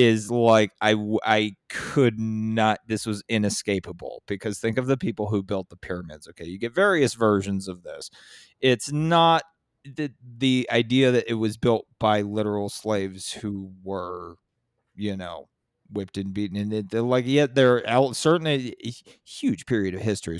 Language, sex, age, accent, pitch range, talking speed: English, male, 30-49, American, 105-135 Hz, 165 wpm